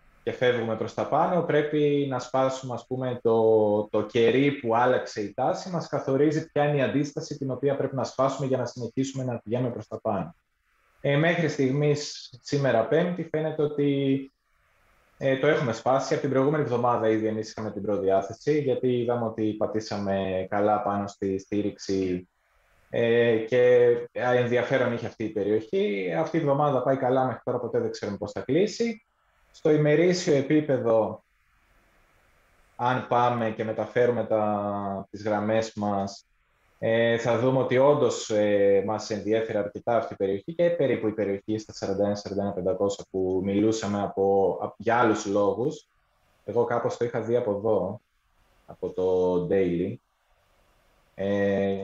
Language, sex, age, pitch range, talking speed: Greek, male, 20-39, 100-135 Hz, 150 wpm